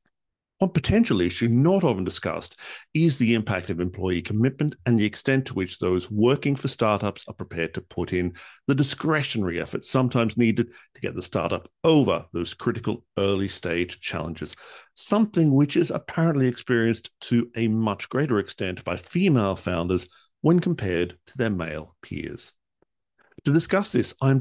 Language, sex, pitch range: English, male, 95-130 Hz